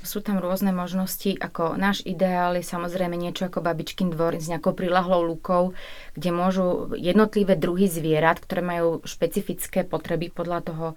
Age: 30-49